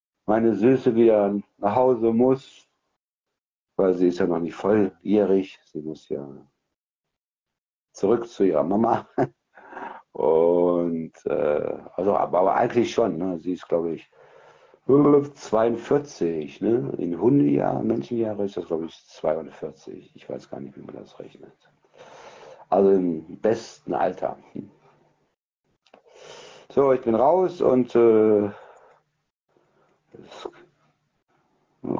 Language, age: German, 60-79